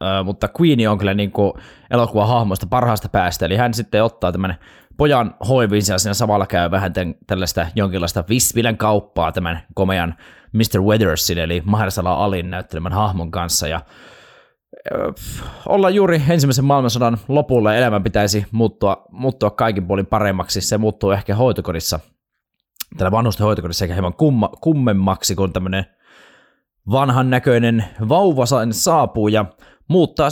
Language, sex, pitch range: Finnish, male, 95-120 Hz